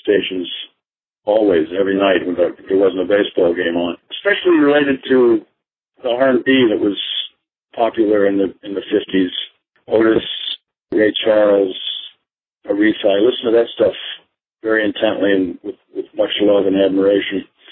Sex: male